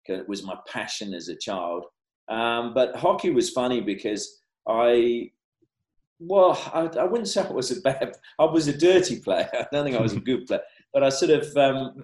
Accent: British